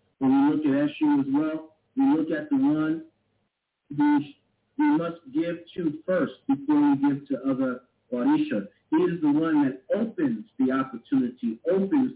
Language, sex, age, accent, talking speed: English, male, 50-69, American, 165 wpm